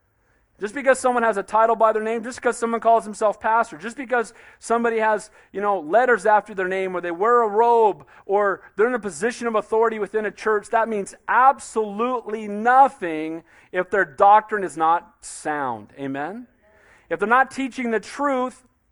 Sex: male